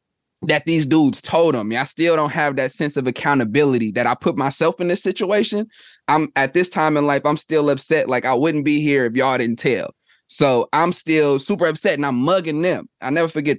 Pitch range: 135-175 Hz